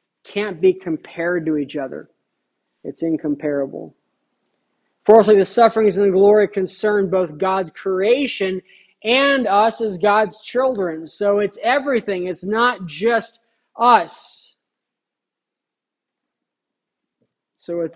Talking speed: 105 wpm